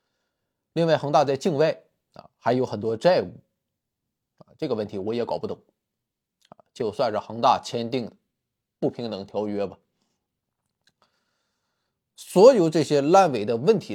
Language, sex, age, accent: Chinese, male, 20-39, native